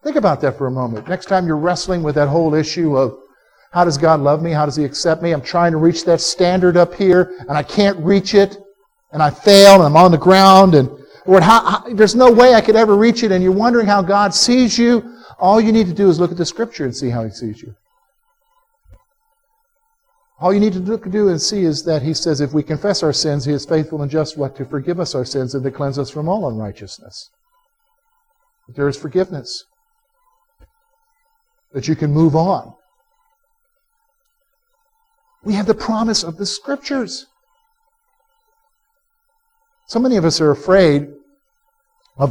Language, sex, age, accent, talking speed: English, male, 50-69, American, 195 wpm